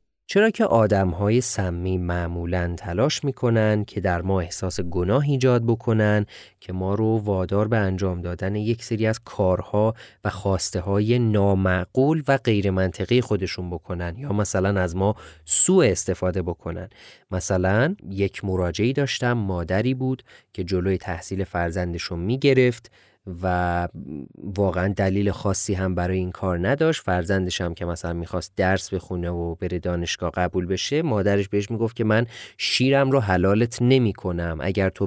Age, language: 30-49, Persian